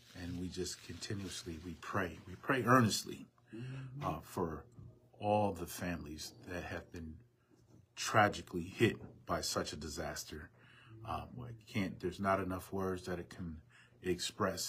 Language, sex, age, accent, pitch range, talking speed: English, male, 30-49, American, 90-120 Hz, 140 wpm